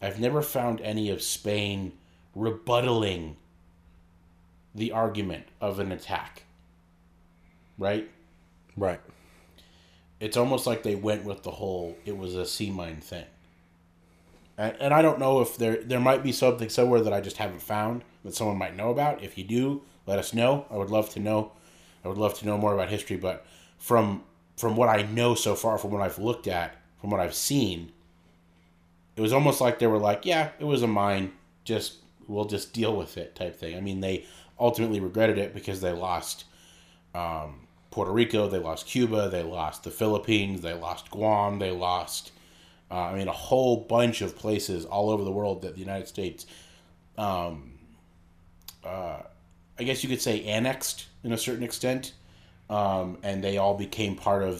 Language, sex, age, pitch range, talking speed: English, male, 30-49, 85-110 Hz, 180 wpm